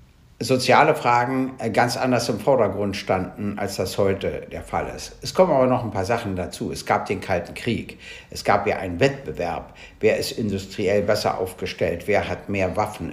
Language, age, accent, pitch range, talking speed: German, 60-79, German, 100-135 Hz, 185 wpm